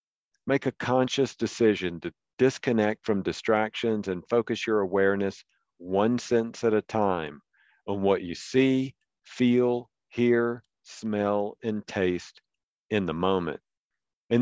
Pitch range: 95-120 Hz